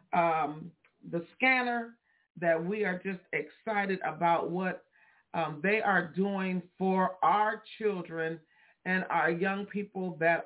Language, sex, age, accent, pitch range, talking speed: English, female, 50-69, American, 170-205 Hz, 125 wpm